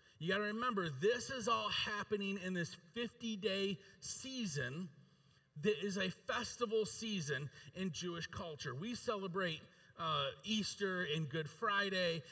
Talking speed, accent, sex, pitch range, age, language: 130 wpm, American, male, 160-205 Hz, 40-59, English